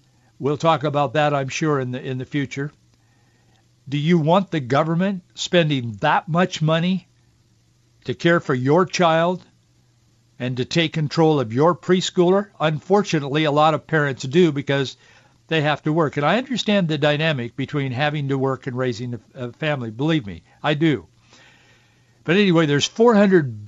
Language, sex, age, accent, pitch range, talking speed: English, male, 60-79, American, 125-160 Hz, 160 wpm